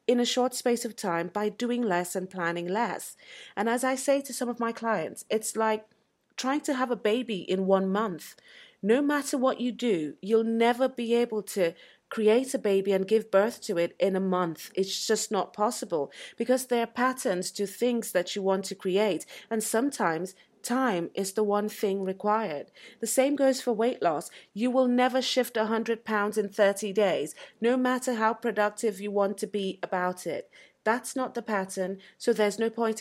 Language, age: English, 30-49